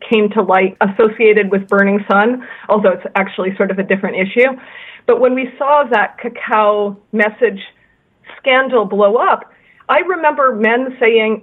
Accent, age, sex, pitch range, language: American, 40-59, female, 205-240 Hz, Korean